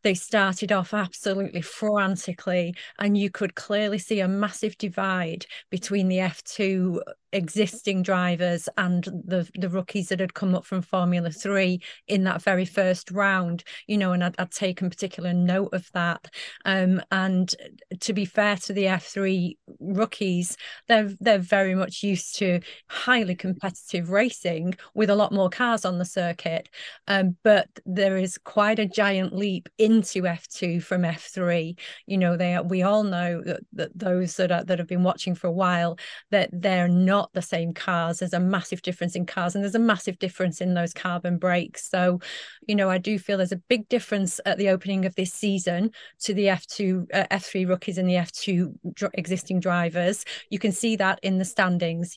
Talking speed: 180 wpm